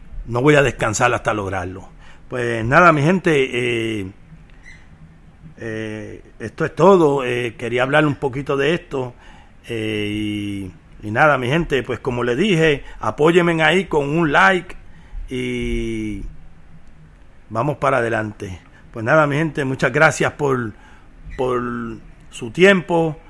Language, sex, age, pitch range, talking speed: Spanish, male, 50-69, 115-155 Hz, 130 wpm